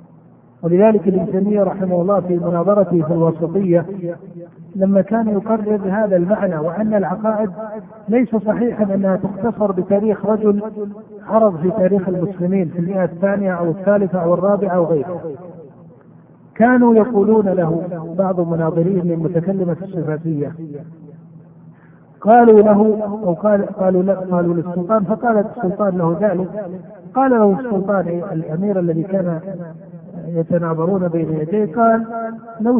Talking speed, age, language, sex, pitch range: 120 wpm, 50-69, Arabic, male, 175-215 Hz